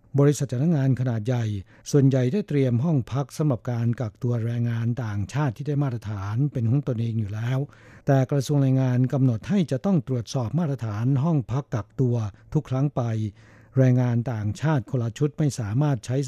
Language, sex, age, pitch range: Thai, male, 60-79, 115-145 Hz